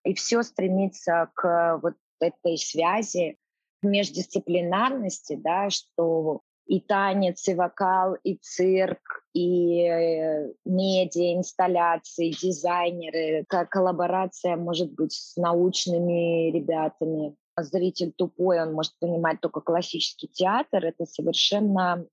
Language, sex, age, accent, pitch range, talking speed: Russian, female, 20-39, native, 165-195 Hz, 95 wpm